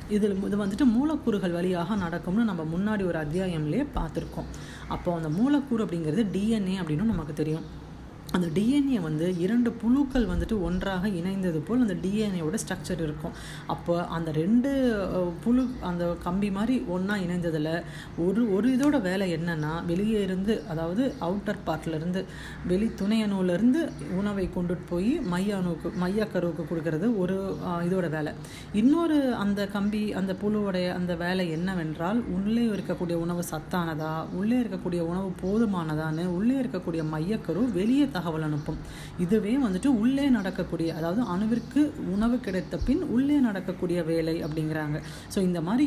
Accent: native